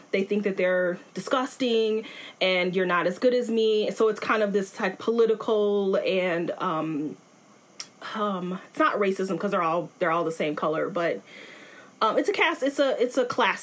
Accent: American